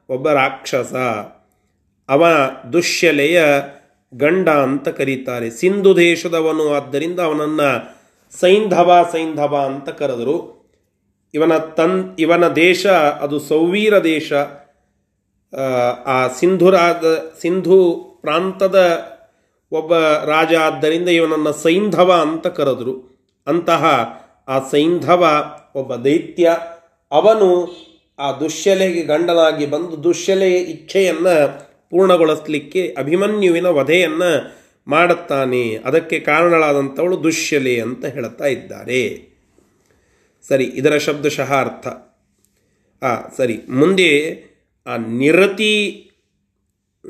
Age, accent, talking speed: 30-49, native, 80 wpm